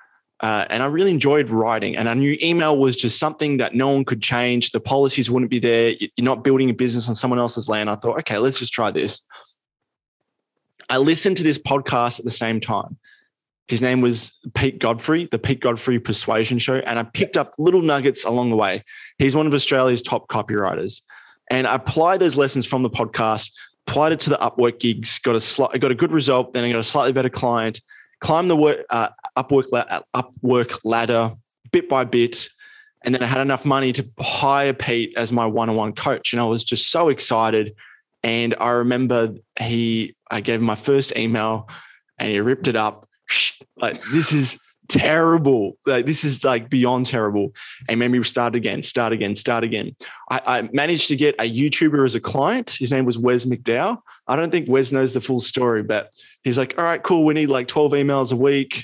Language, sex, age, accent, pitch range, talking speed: English, male, 20-39, Australian, 115-140 Hz, 205 wpm